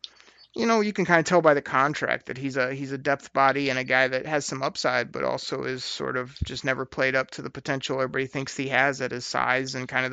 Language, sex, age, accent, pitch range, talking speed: English, male, 30-49, American, 135-160 Hz, 275 wpm